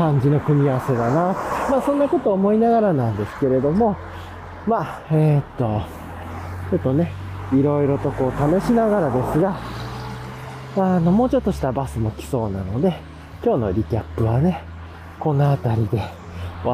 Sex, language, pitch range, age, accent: male, Japanese, 130-195 Hz, 40-59, native